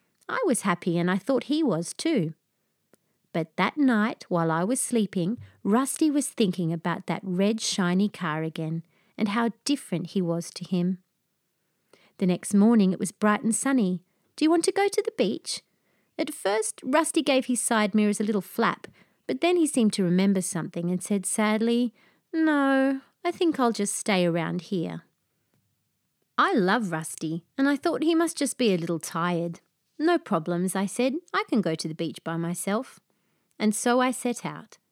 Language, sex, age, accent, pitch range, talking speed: English, female, 30-49, Australian, 175-265 Hz, 180 wpm